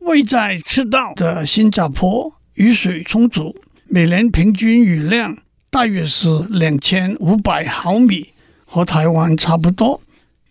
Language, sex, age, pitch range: Chinese, male, 60-79, 175-240 Hz